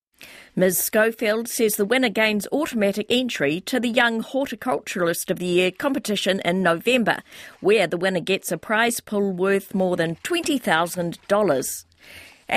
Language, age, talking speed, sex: English, 50-69, 140 wpm, female